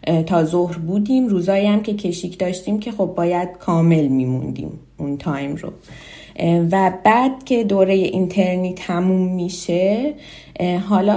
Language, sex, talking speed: Persian, female, 130 wpm